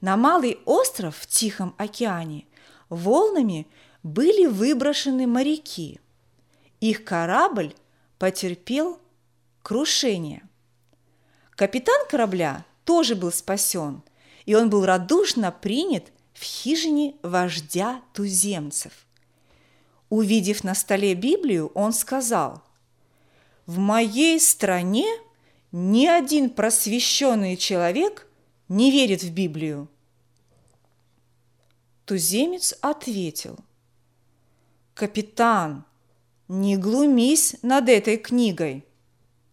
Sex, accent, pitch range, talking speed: female, native, 160-255 Hz, 80 wpm